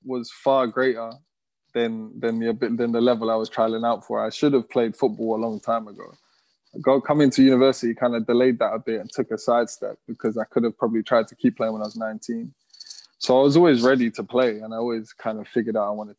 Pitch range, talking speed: 110-130 Hz, 245 wpm